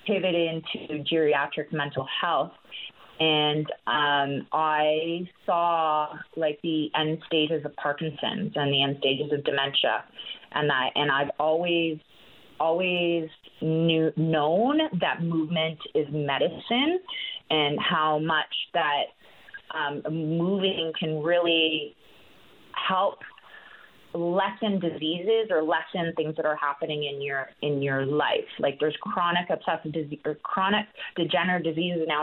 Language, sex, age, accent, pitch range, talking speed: English, female, 30-49, American, 150-170 Hz, 120 wpm